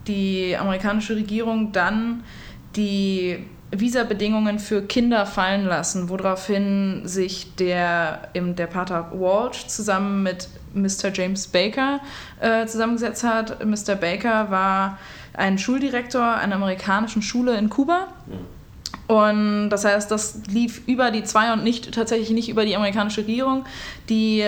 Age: 20-39